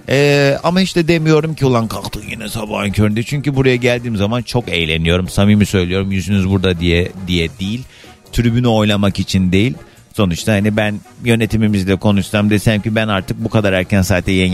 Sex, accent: male, native